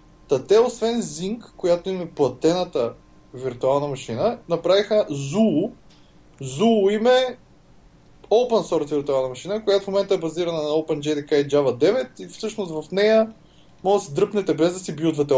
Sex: male